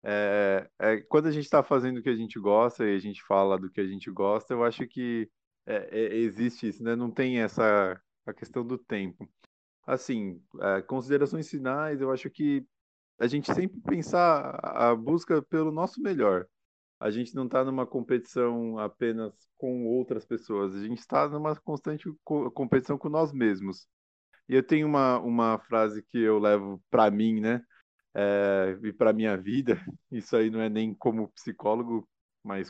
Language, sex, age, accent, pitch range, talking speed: Portuguese, male, 20-39, Brazilian, 105-135 Hz, 180 wpm